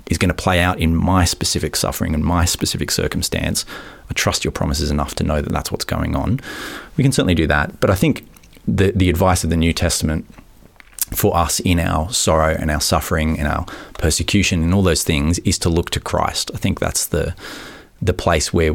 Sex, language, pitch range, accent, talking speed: male, English, 80-95 Hz, Australian, 215 wpm